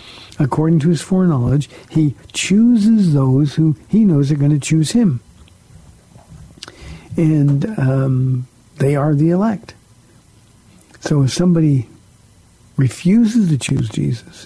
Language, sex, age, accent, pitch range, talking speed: English, male, 50-69, American, 125-160 Hz, 115 wpm